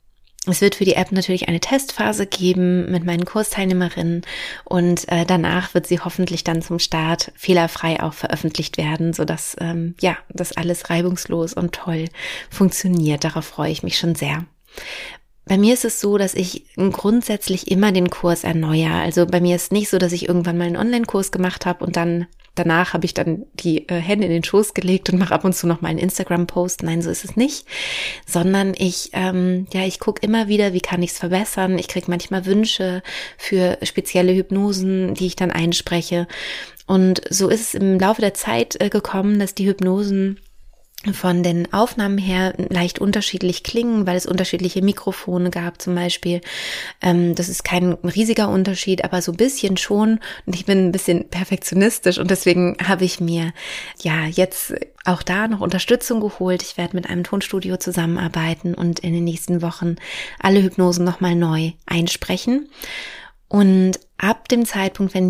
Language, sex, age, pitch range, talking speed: German, female, 30-49, 175-195 Hz, 175 wpm